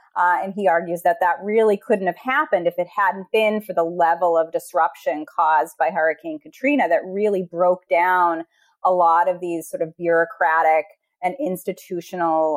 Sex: female